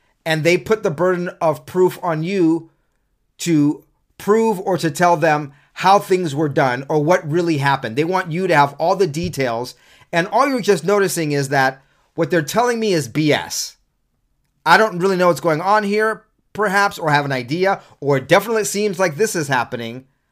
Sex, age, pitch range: male, 30-49, 135-180 Hz